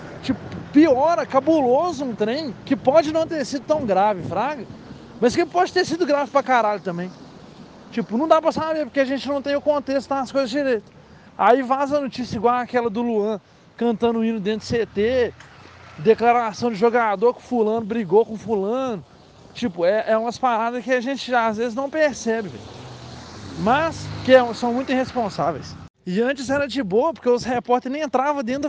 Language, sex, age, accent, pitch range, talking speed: Portuguese, male, 20-39, Brazilian, 220-285 Hz, 185 wpm